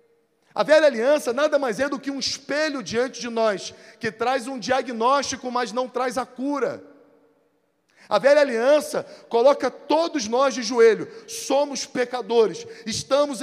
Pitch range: 195-275 Hz